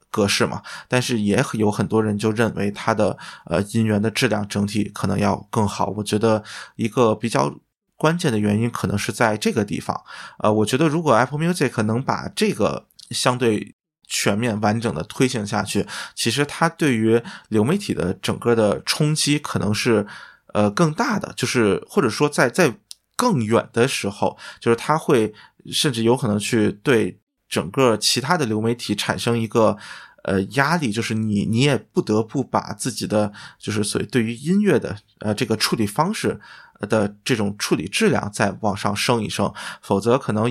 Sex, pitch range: male, 105-125 Hz